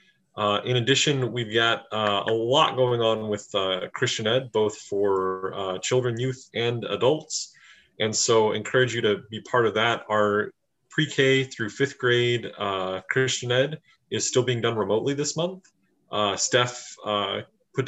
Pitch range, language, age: 110-140 Hz, English, 20-39